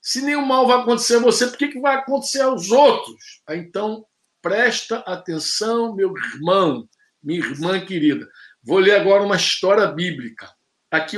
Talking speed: 155 wpm